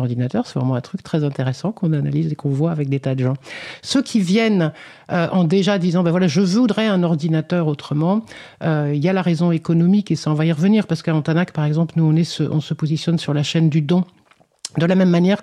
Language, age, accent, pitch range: French, 50-69, French, 150-185 Hz